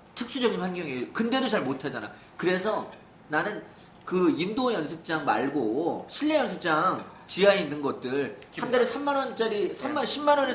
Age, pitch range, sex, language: 40-59, 180-250 Hz, male, Korean